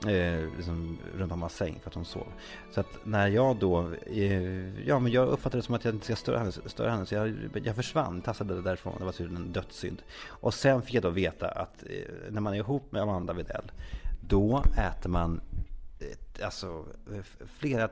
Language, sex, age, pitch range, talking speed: Swedish, male, 30-49, 90-125 Hz, 195 wpm